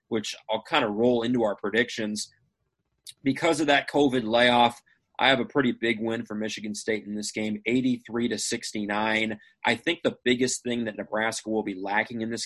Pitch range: 105-120 Hz